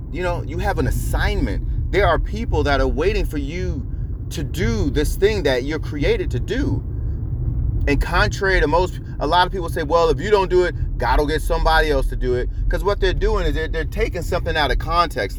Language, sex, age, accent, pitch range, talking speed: English, male, 30-49, American, 115-160 Hz, 225 wpm